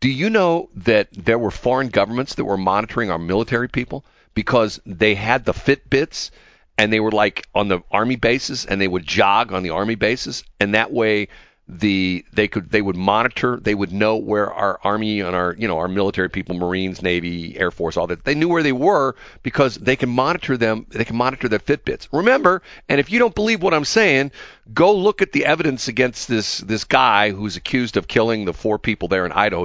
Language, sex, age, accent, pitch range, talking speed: English, male, 40-59, American, 95-130 Hz, 215 wpm